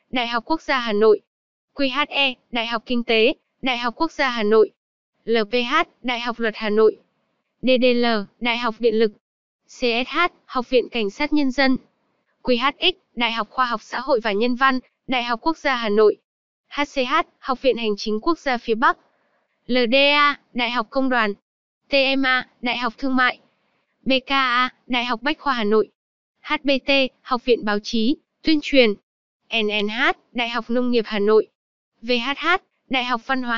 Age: 20-39